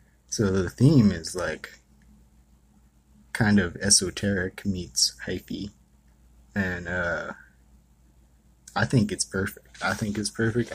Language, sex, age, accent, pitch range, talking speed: English, male, 20-39, American, 65-105 Hz, 110 wpm